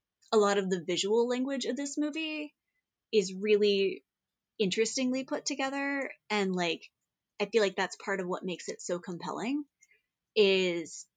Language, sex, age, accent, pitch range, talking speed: English, female, 20-39, American, 185-225 Hz, 150 wpm